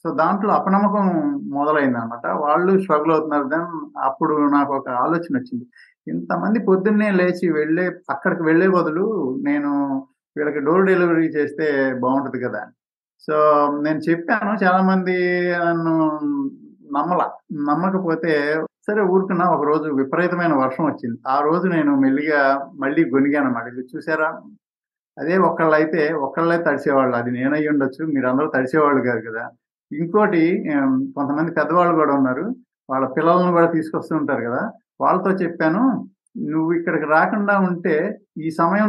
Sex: male